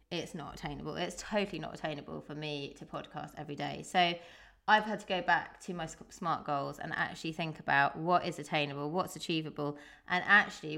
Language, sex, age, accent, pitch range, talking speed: English, female, 20-39, British, 155-185 Hz, 190 wpm